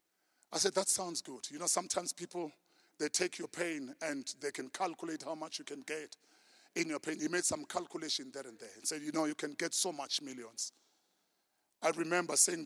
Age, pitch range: 50-69, 150-190 Hz